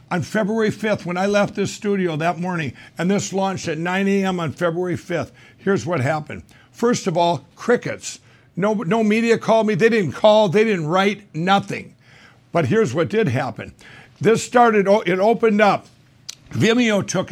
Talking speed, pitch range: 175 wpm, 165-220 Hz